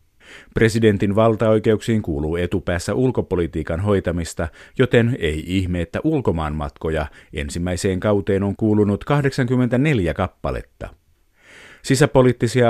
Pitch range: 90-115 Hz